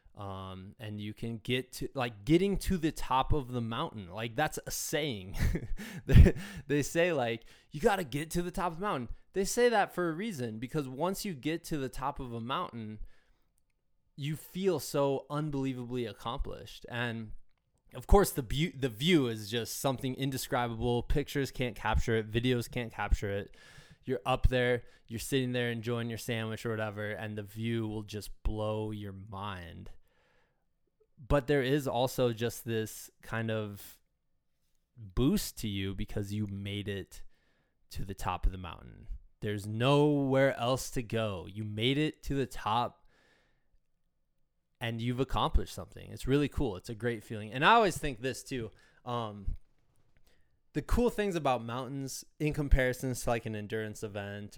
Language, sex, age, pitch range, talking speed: English, male, 20-39, 105-145 Hz, 165 wpm